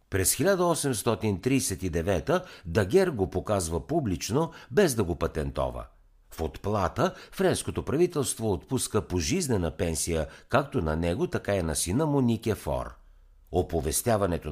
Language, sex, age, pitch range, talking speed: Bulgarian, male, 60-79, 80-130 Hz, 110 wpm